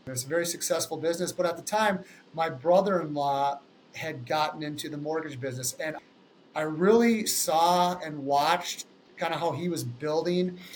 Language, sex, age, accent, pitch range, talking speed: English, male, 30-49, American, 150-185 Hz, 160 wpm